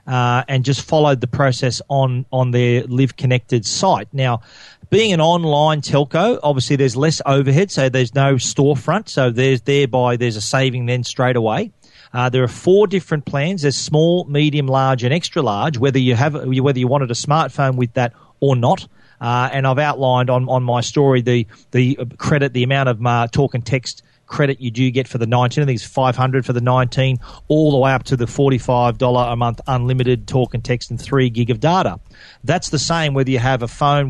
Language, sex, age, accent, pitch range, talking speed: English, male, 40-59, Australian, 125-145 Hz, 205 wpm